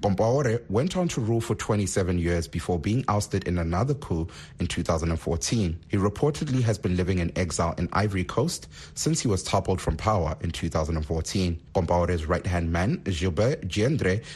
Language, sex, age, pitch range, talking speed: English, male, 30-49, 85-115 Hz, 165 wpm